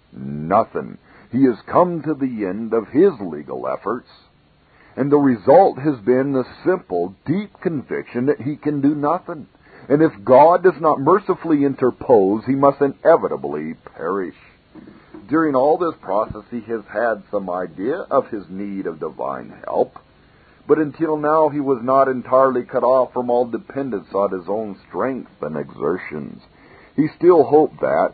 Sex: male